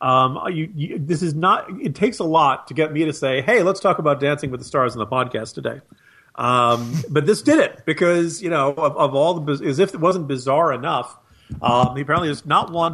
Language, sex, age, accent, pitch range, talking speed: English, male, 40-59, American, 120-155 Hz, 230 wpm